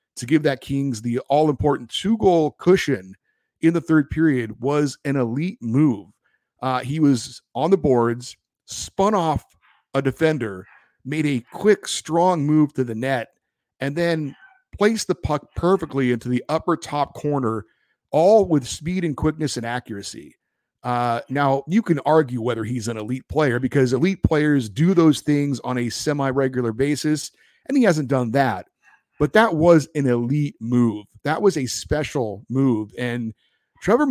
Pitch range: 125-170 Hz